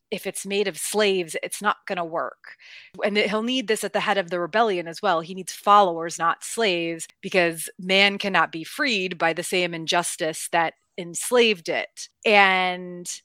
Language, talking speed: English, 180 wpm